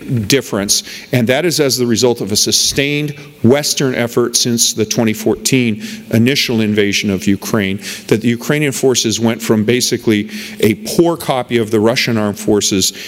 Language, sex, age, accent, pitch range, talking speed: English, male, 40-59, American, 110-140 Hz, 155 wpm